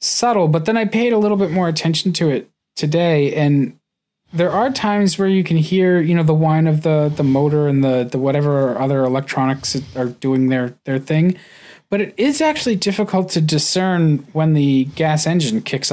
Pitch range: 135-175 Hz